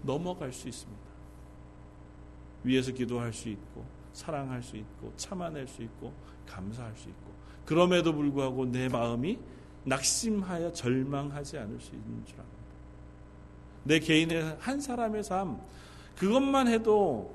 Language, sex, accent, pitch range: Korean, male, native, 115-175 Hz